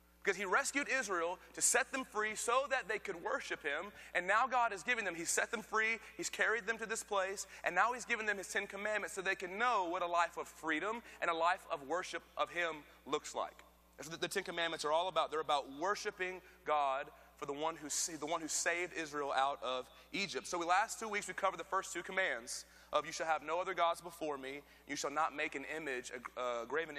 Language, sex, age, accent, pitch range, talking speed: English, male, 30-49, American, 145-195 Hz, 240 wpm